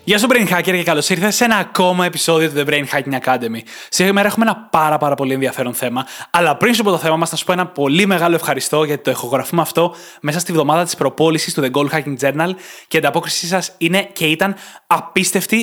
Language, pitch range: Greek, 145-175 Hz